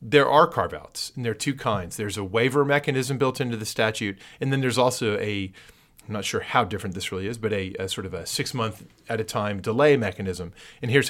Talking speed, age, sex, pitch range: 220 wpm, 40-59, male, 105-135 Hz